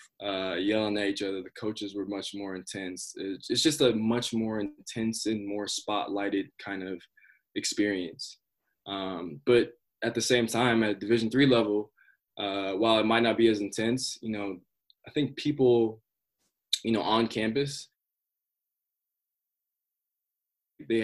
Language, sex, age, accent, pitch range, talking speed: English, male, 20-39, American, 100-115 Hz, 145 wpm